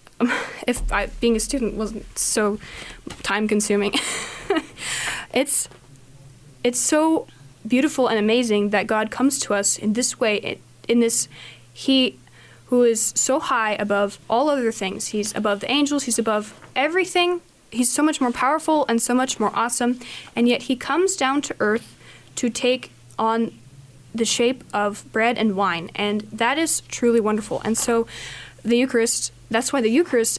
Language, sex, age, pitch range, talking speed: English, female, 20-39, 210-255 Hz, 160 wpm